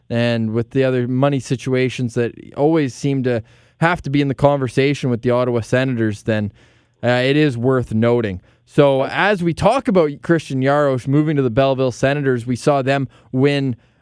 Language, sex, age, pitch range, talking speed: English, male, 20-39, 125-145 Hz, 180 wpm